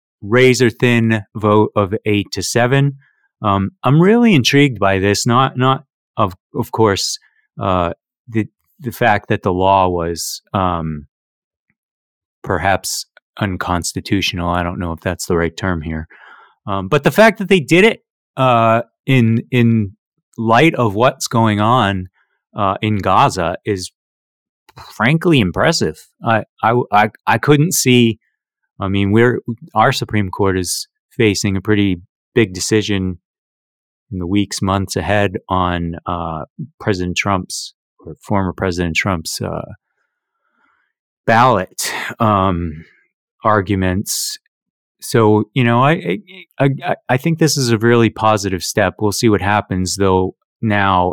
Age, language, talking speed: 30-49, English, 135 wpm